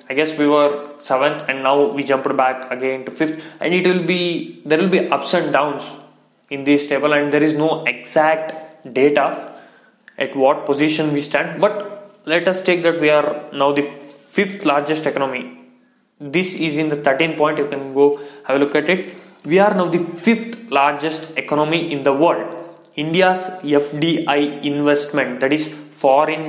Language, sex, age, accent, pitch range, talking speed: English, male, 20-39, Indian, 145-180 Hz, 180 wpm